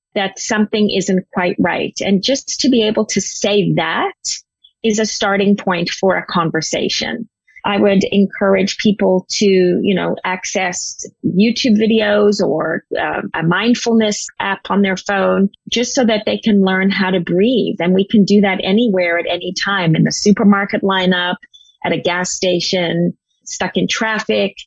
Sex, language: female, English